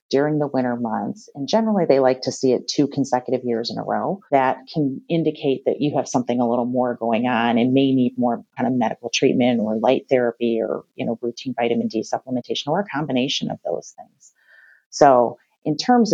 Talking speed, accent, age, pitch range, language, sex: 210 wpm, American, 30-49, 125-145 Hz, English, female